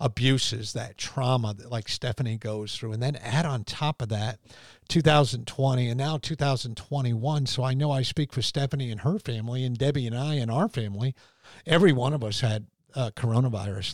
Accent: American